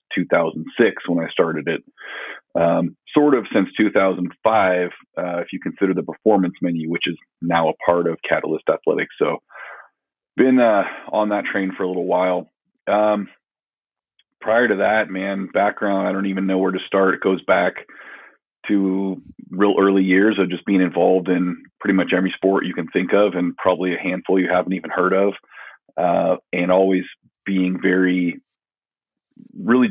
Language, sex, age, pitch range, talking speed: English, male, 40-59, 90-100 Hz, 165 wpm